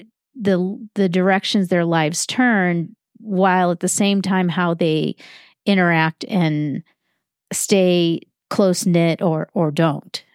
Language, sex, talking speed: English, female, 120 wpm